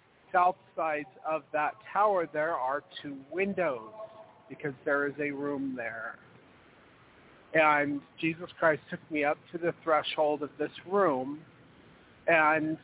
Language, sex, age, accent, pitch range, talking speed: English, male, 40-59, American, 140-170 Hz, 130 wpm